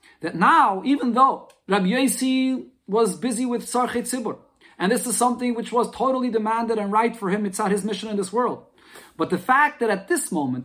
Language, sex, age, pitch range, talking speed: English, male, 40-59, 175-235 Hz, 210 wpm